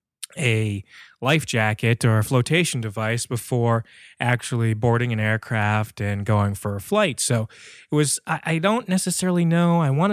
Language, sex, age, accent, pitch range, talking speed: English, male, 20-39, American, 110-140 Hz, 160 wpm